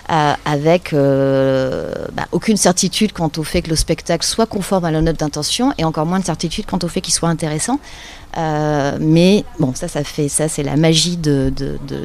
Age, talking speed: 30-49, 205 wpm